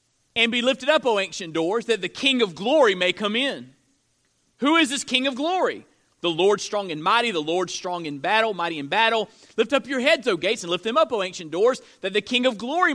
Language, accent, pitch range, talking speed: English, American, 170-245 Hz, 240 wpm